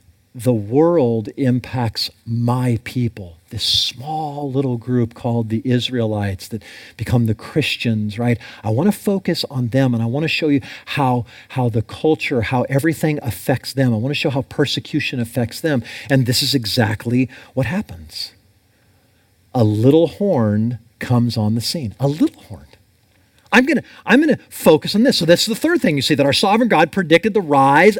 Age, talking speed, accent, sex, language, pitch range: 40-59, 180 wpm, American, male, English, 115-175 Hz